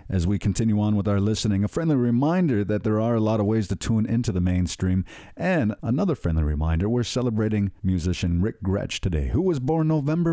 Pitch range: 95-130 Hz